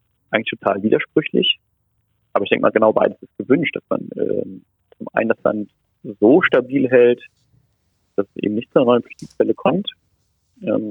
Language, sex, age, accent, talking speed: German, male, 40-59, German, 170 wpm